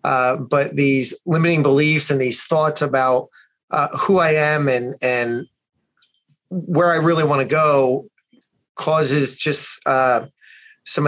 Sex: male